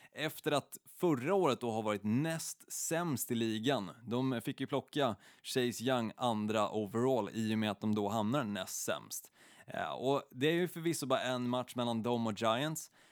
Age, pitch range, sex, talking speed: 20-39, 110-135 Hz, male, 190 wpm